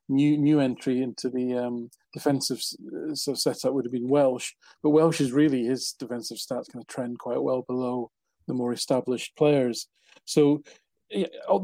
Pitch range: 130-150 Hz